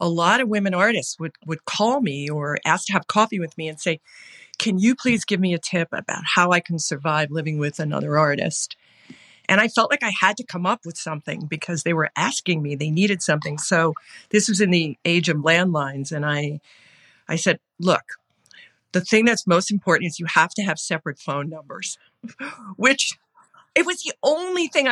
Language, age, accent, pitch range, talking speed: English, 50-69, American, 155-200 Hz, 205 wpm